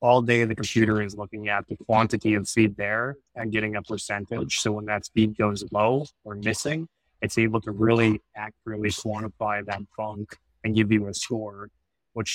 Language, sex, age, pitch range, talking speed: English, male, 20-39, 105-110 Hz, 185 wpm